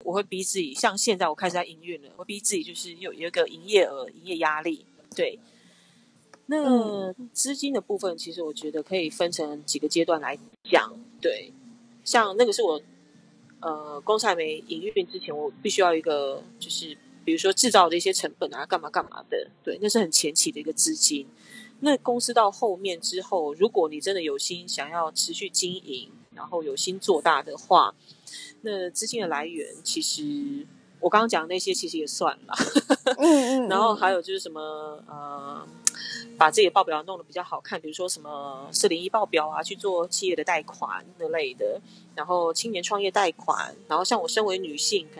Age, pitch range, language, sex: 30-49, 170-250 Hz, Chinese, female